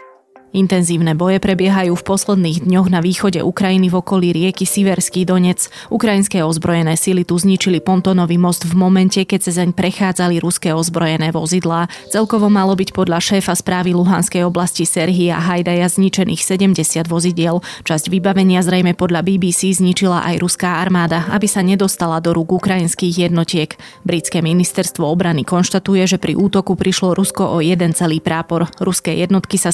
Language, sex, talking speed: Slovak, female, 150 wpm